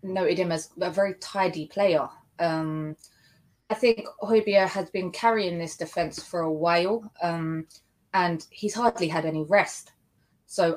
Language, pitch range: English, 160-195 Hz